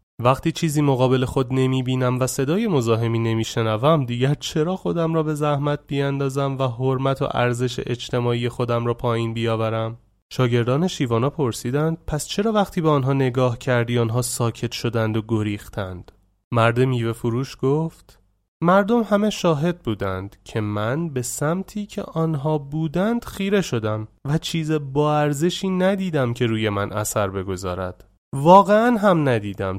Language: Persian